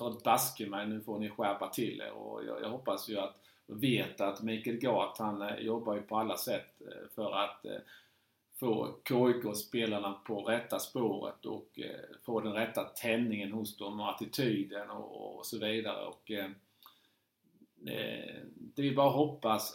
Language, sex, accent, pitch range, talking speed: Swedish, male, Norwegian, 105-120 Hz, 165 wpm